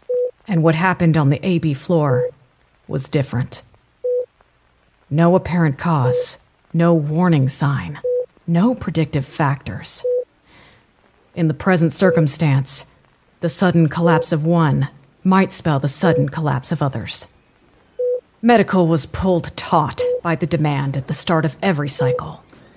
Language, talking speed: English, 125 wpm